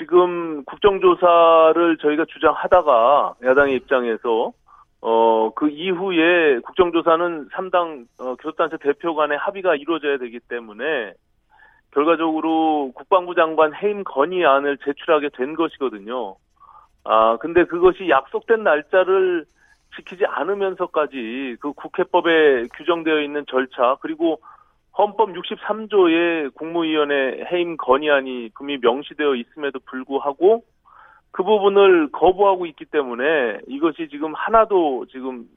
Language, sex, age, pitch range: Korean, male, 40-59, 140-175 Hz